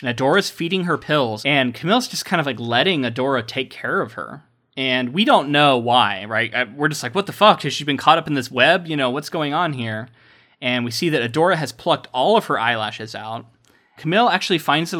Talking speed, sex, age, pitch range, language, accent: 235 wpm, male, 20-39, 115-145 Hz, English, American